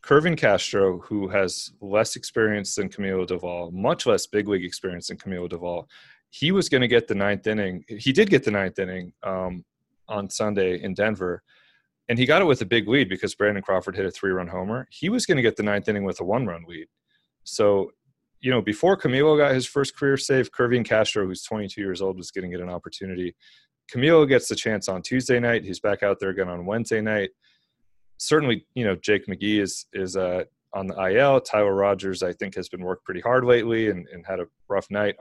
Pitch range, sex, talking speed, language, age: 95-115 Hz, male, 215 wpm, English, 30-49